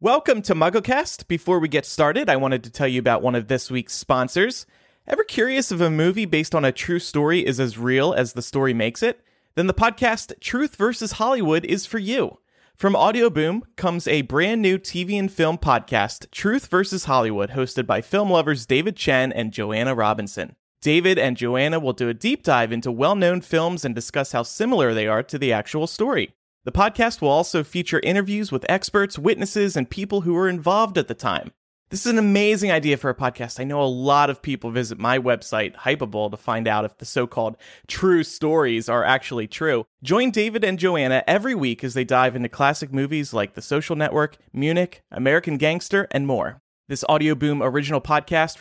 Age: 30-49